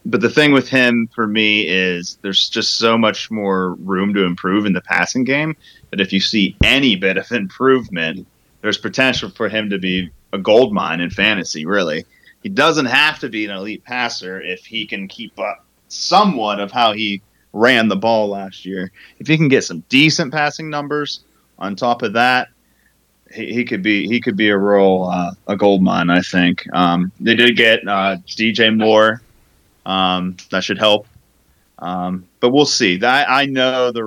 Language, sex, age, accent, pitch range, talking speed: English, male, 30-49, American, 95-120 Hz, 185 wpm